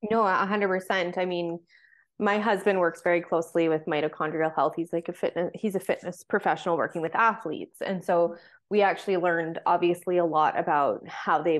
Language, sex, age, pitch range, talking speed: English, female, 20-39, 175-210 Hz, 185 wpm